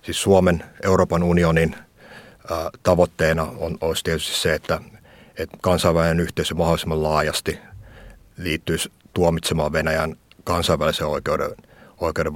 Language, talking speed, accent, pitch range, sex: Finnish, 95 wpm, native, 80-95 Hz, male